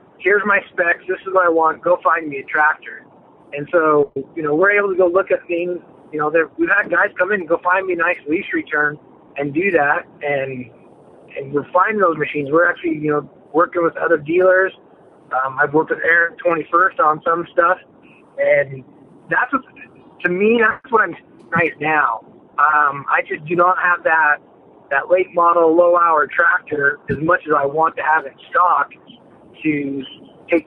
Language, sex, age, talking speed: English, male, 20-39, 195 wpm